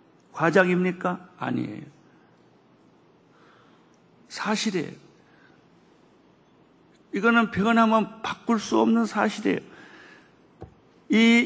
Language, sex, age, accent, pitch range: Korean, male, 50-69, native, 150-180 Hz